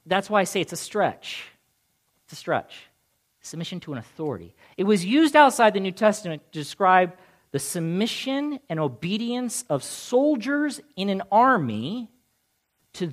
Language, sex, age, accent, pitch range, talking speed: English, male, 40-59, American, 125-185 Hz, 150 wpm